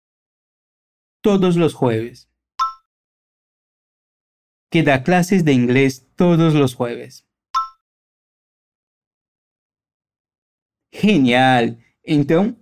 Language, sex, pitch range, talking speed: Portuguese, male, 140-200 Hz, 60 wpm